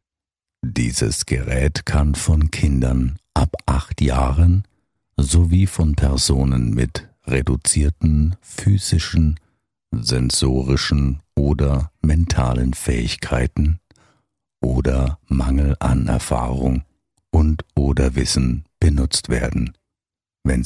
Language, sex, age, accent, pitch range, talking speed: German, male, 60-79, German, 65-85 Hz, 80 wpm